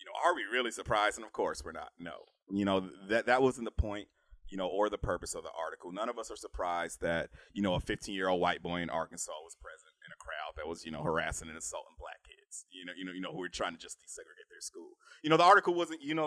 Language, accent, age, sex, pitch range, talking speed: English, American, 30-49, male, 110-175 Hz, 290 wpm